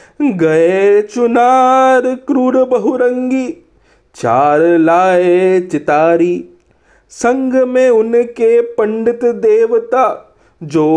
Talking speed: 70 wpm